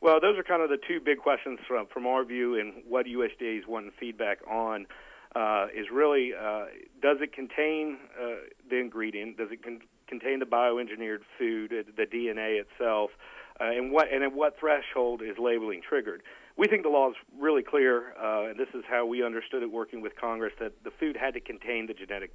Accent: American